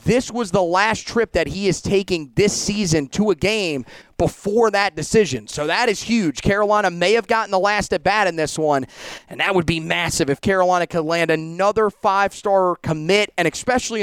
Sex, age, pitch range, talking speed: male, 30-49, 165-205 Hz, 195 wpm